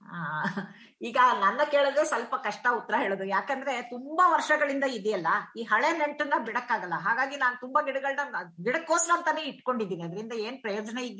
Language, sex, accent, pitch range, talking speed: English, female, Indian, 200-290 Hz, 150 wpm